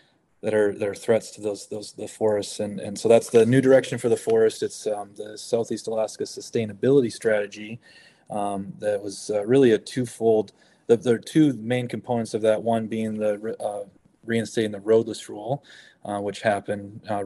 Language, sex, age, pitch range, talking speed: English, male, 20-39, 105-115 Hz, 190 wpm